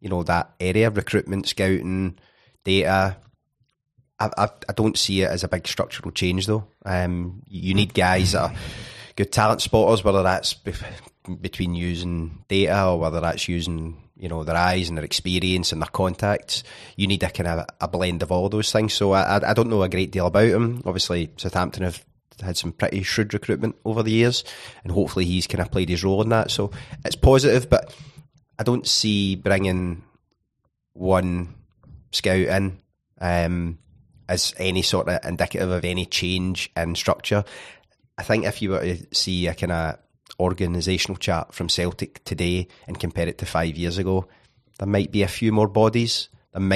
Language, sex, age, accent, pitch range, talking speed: English, male, 30-49, British, 90-110 Hz, 180 wpm